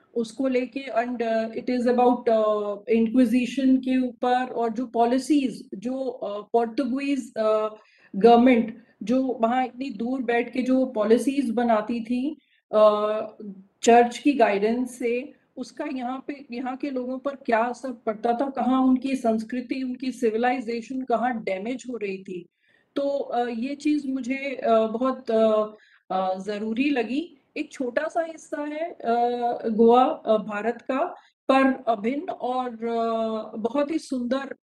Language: English